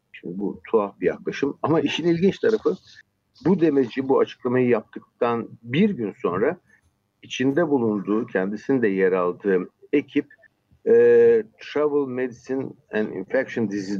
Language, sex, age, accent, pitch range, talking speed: Turkish, male, 60-79, native, 115-185 Hz, 125 wpm